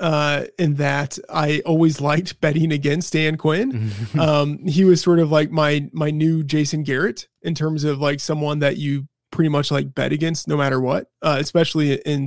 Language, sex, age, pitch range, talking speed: English, male, 20-39, 140-155 Hz, 190 wpm